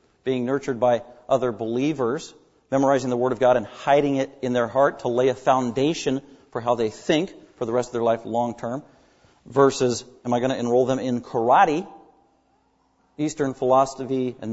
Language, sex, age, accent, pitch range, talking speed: English, male, 40-59, American, 135-210 Hz, 180 wpm